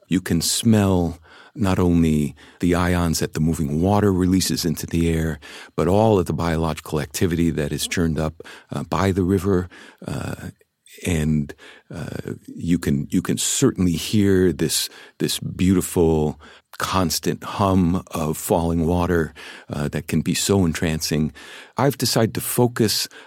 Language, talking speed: English, 145 wpm